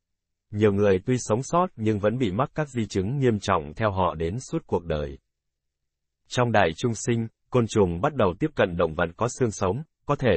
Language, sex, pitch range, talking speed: Vietnamese, male, 90-120 Hz, 215 wpm